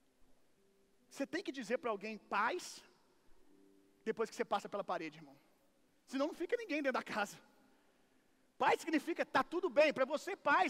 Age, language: 40-59, Gujarati